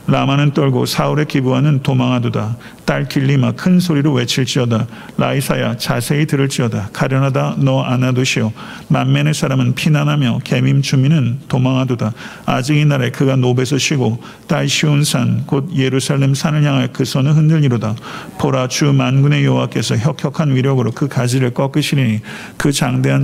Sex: male